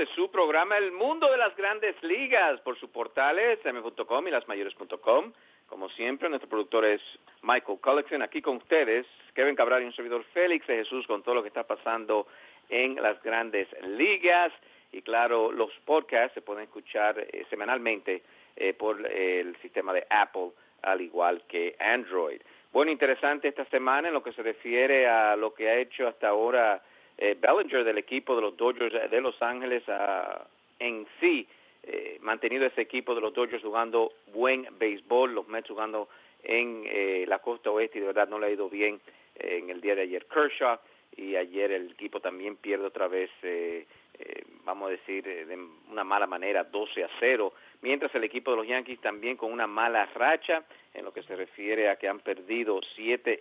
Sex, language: male, English